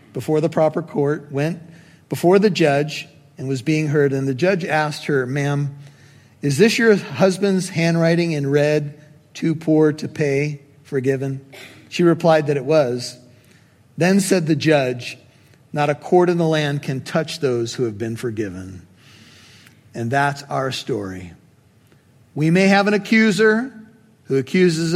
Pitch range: 135-165 Hz